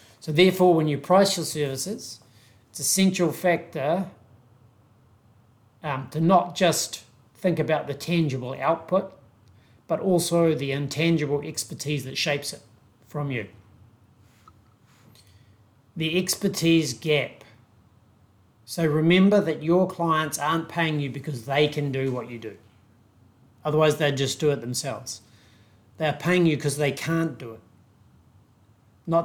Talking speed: 130 wpm